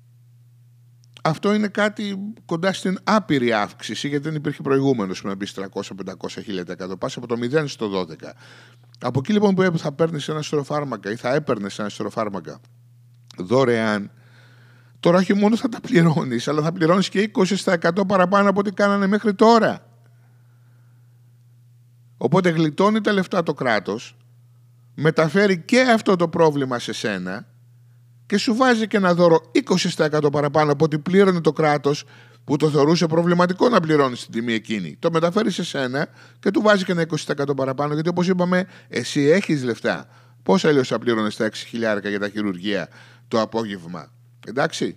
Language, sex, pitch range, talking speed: Greek, male, 120-175 Hz, 155 wpm